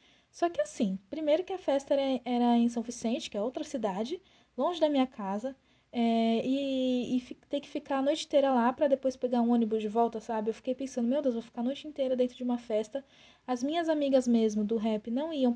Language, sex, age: Portuguese, female, 20-39